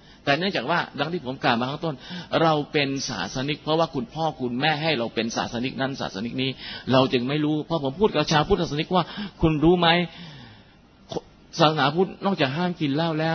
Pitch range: 130-175 Hz